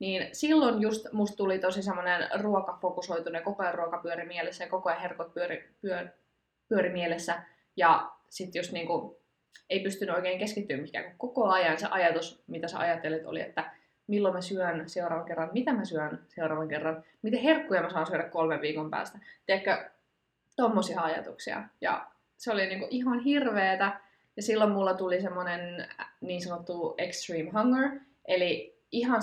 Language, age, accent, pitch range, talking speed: Finnish, 20-39, native, 170-210 Hz, 155 wpm